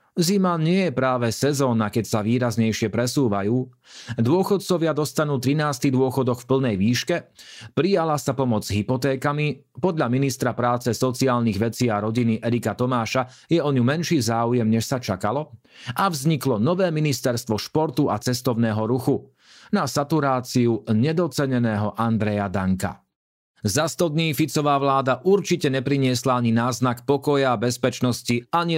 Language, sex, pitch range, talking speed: Slovak, male, 115-145 Hz, 130 wpm